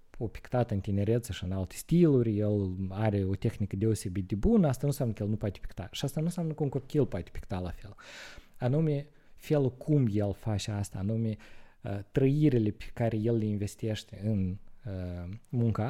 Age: 20-39